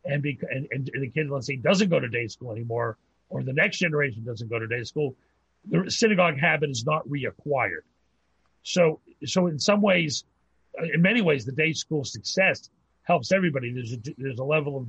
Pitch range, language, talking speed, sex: 130-185 Hz, English, 200 wpm, male